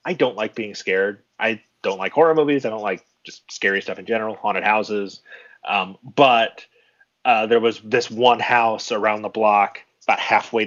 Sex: male